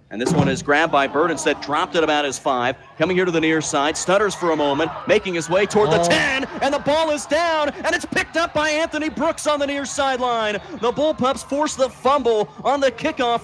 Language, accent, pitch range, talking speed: English, American, 175-255 Hz, 230 wpm